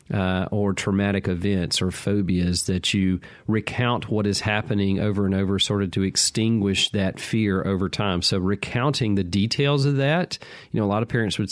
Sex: male